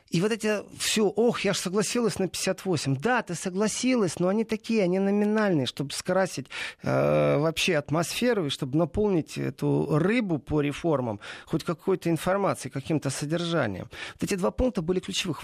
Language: Russian